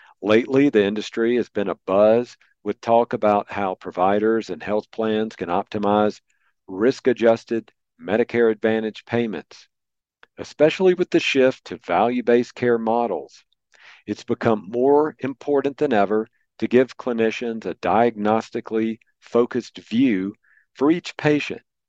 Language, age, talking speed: English, 50-69, 120 wpm